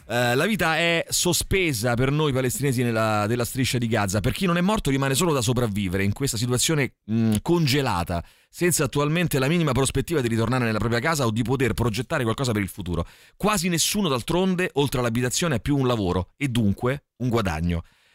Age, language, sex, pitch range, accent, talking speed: 30-49, Italian, male, 110-140 Hz, native, 180 wpm